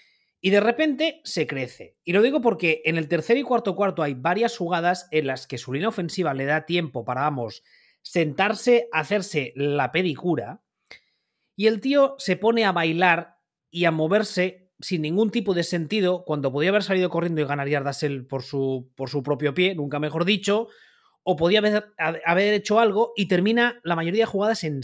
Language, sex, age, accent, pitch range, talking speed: Spanish, male, 30-49, Spanish, 150-210 Hz, 190 wpm